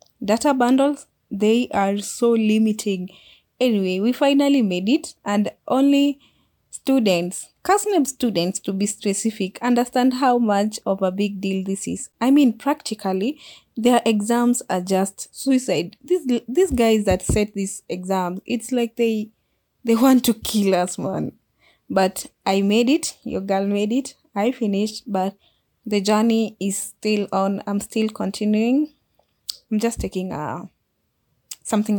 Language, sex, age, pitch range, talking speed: English, female, 20-39, 195-240 Hz, 140 wpm